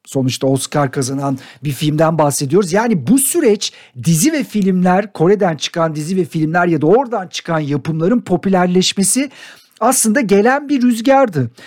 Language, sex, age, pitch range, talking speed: Turkish, male, 50-69, 175-245 Hz, 140 wpm